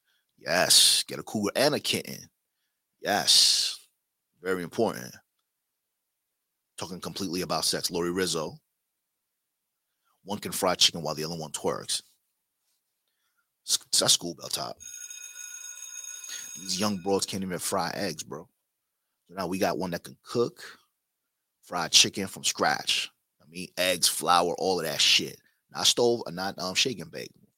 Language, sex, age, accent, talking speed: English, male, 30-49, American, 140 wpm